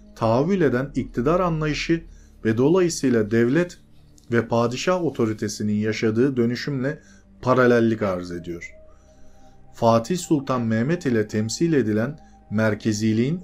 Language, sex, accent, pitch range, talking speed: Turkish, male, native, 105-135 Hz, 100 wpm